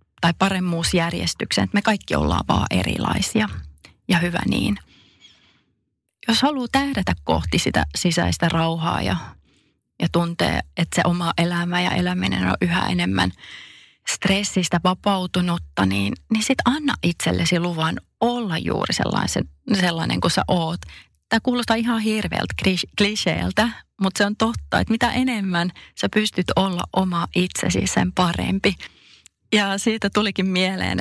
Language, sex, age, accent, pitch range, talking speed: Finnish, female, 30-49, native, 165-210 Hz, 130 wpm